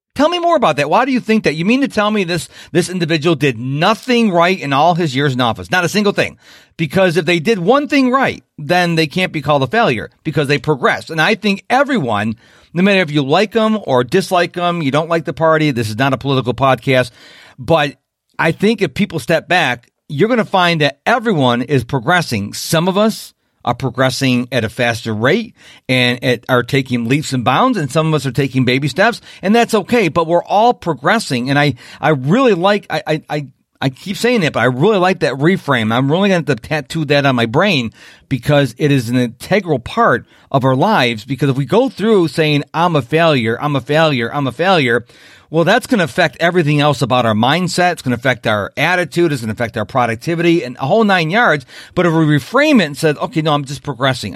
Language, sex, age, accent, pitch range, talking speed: English, male, 40-59, American, 130-180 Hz, 225 wpm